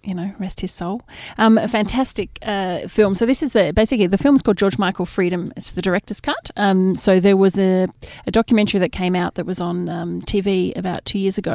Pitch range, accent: 180-210 Hz, Australian